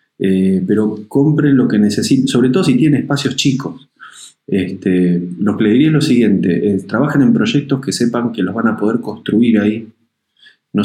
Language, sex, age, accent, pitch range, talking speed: Spanish, male, 20-39, Argentinian, 100-130 Hz, 185 wpm